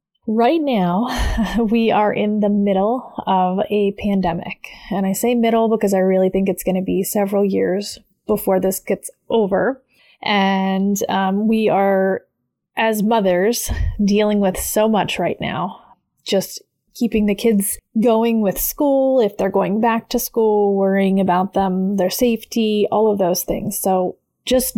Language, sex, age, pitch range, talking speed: English, female, 30-49, 195-230 Hz, 155 wpm